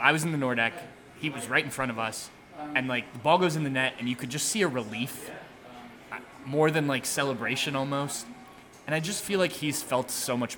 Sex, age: male, 20-39